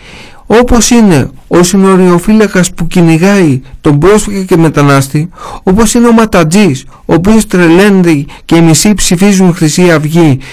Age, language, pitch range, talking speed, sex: 50-69, Greek, 150-205 Hz, 130 wpm, male